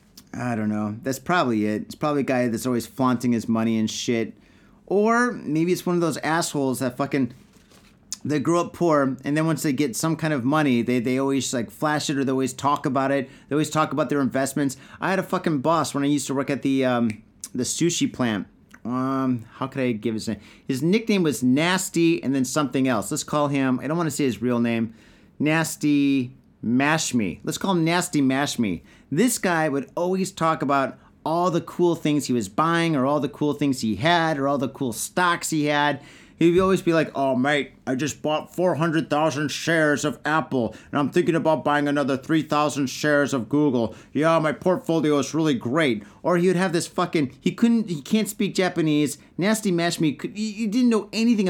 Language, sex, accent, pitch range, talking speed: English, male, American, 135-170 Hz, 210 wpm